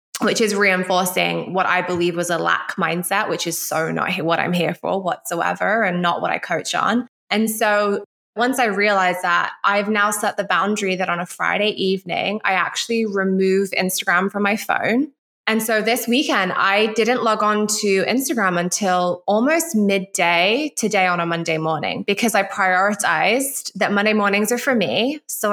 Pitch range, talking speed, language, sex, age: 190-240 Hz, 180 wpm, English, female, 20-39